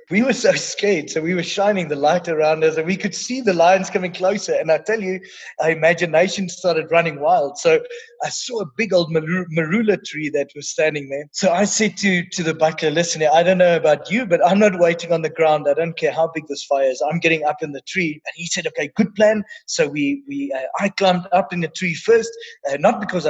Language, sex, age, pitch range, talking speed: English, male, 30-49, 165-220 Hz, 245 wpm